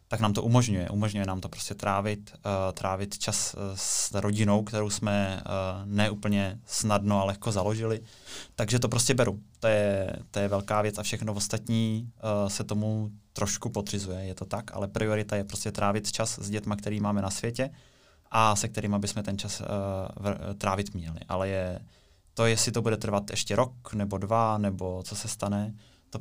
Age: 20-39